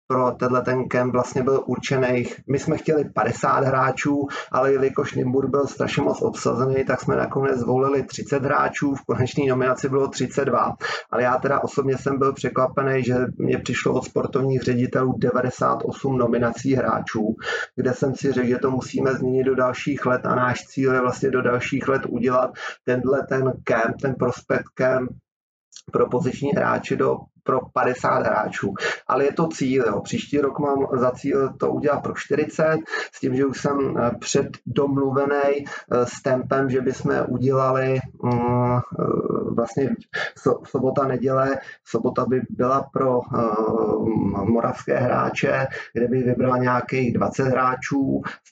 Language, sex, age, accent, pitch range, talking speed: Czech, male, 30-49, native, 125-135 Hz, 145 wpm